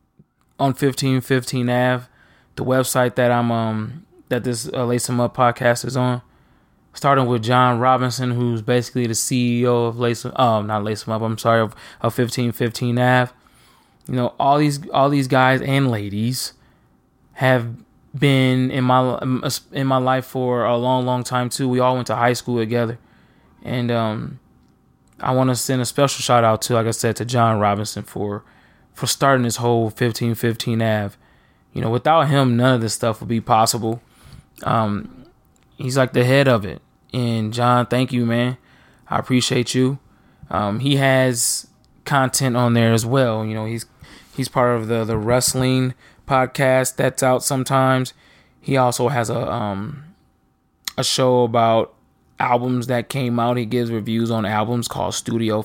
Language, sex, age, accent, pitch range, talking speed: English, male, 20-39, American, 115-130 Hz, 170 wpm